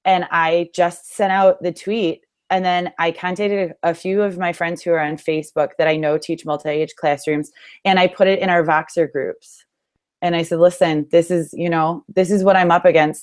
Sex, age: female, 20-39